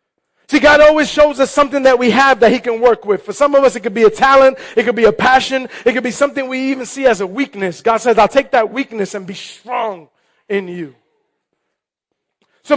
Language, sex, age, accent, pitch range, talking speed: English, male, 30-49, American, 225-290 Hz, 235 wpm